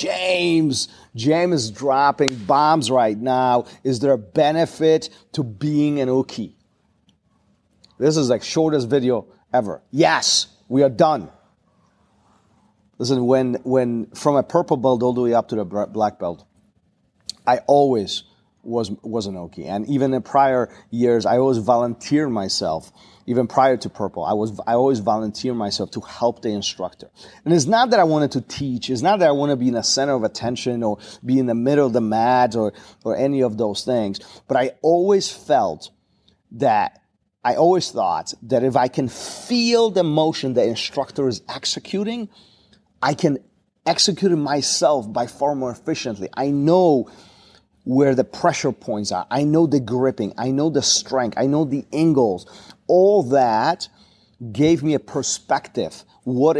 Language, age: English, 40-59